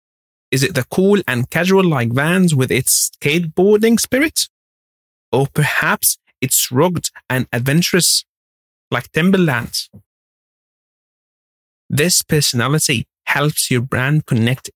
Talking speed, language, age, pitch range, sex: 105 wpm, English, 30-49, 120-155 Hz, male